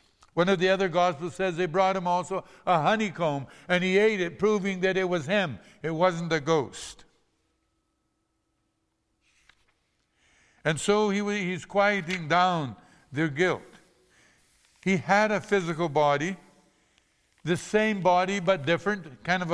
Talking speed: 135 wpm